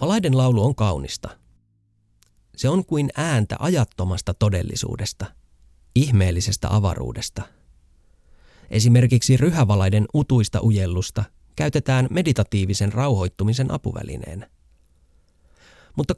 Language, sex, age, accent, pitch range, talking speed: Finnish, male, 30-49, native, 90-135 Hz, 80 wpm